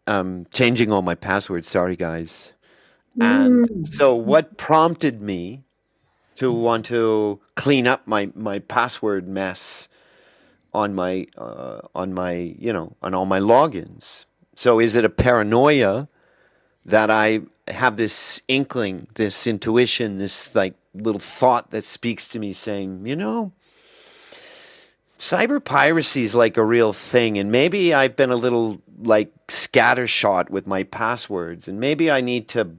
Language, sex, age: English, male, 50-69